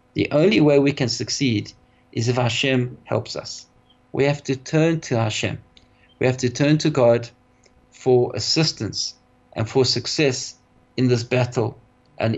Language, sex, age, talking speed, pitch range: English, male, 50-69, 155 wpm, 125-145 Hz